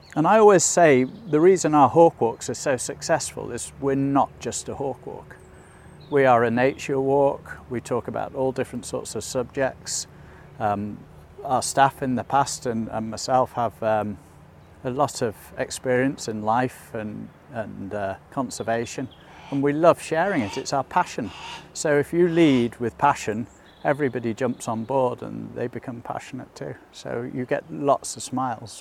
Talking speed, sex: 170 wpm, male